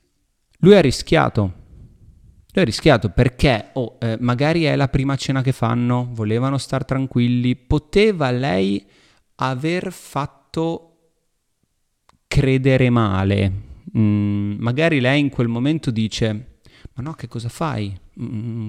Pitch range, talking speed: 110-140 Hz, 120 wpm